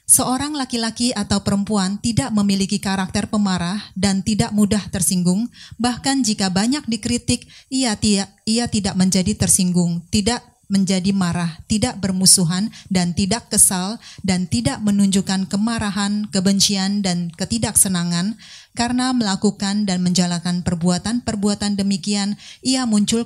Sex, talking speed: female, 115 wpm